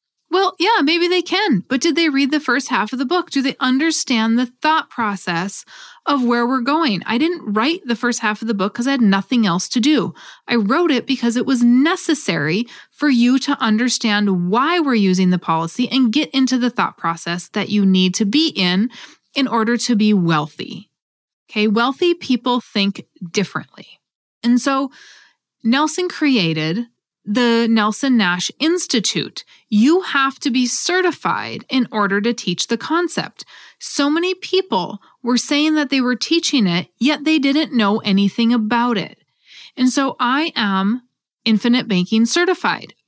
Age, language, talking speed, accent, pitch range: 20-39, English, 170 wpm, American, 215-290 Hz